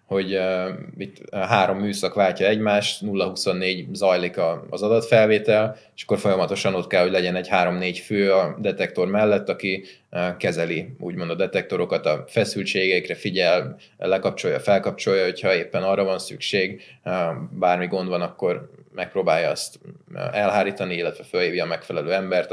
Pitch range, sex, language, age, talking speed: 90-105 Hz, male, Hungarian, 20-39, 145 wpm